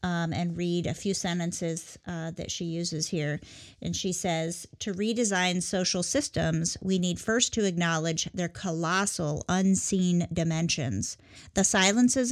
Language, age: English, 40-59